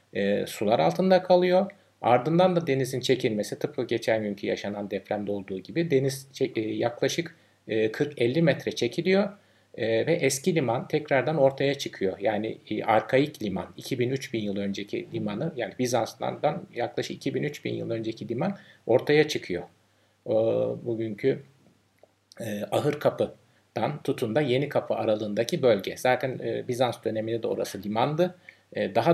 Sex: male